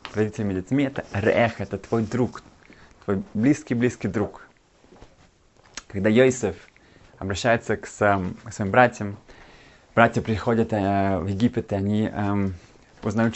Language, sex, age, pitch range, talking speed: Russian, male, 20-39, 100-125 Hz, 120 wpm